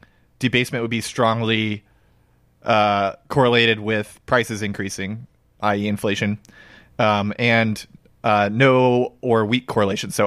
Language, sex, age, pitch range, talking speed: English, male, 30-49, 105-125 Hz, 110 wpm